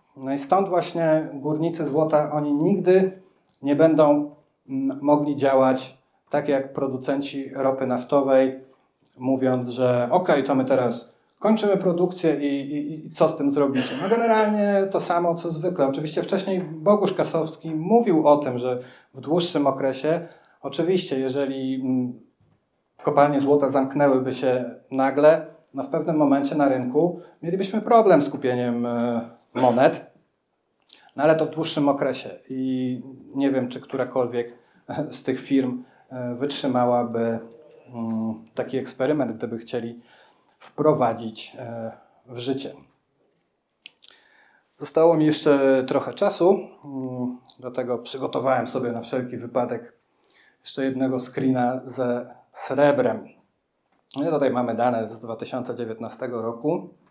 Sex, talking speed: male, 120 wpm